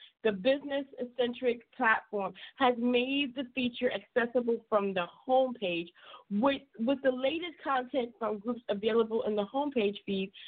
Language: English